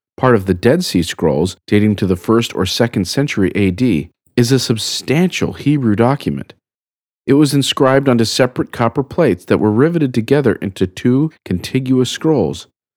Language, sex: English, male